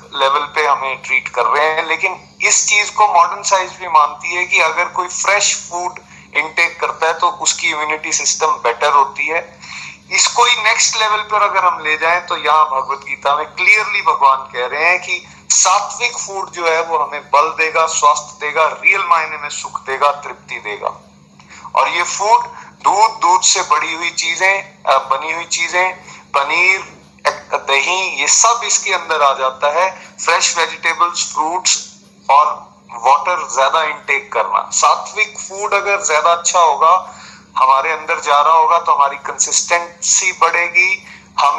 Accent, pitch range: native, 155-195 Hz